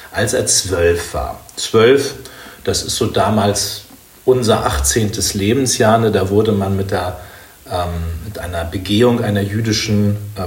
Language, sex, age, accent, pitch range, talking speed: German, male, 40-59, German, 95-125 Hz, 145 wpm